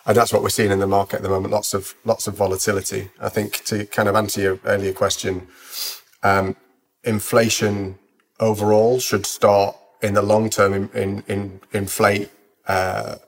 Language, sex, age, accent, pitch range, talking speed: English, male, 30-49, British, 95-110 Hz, 175 wpm